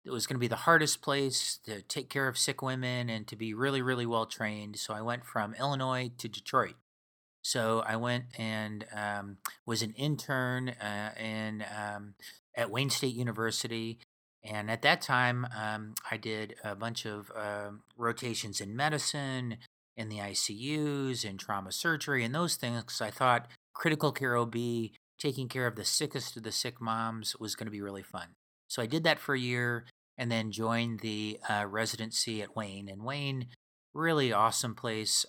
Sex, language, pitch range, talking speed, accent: male, English, 110-130 Hz, 180 wpm, American